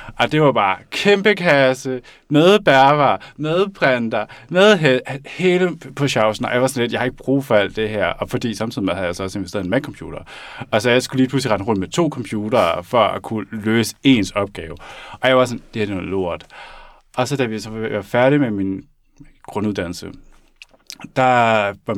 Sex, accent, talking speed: male, native, 215 wpm